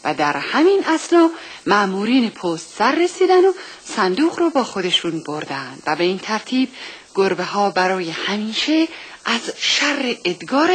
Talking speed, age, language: 140 wpm, 40-59, Persian